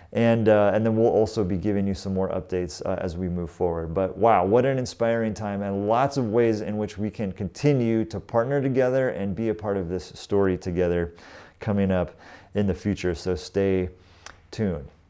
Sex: male